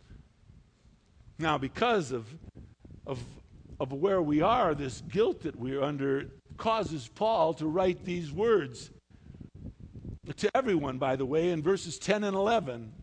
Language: English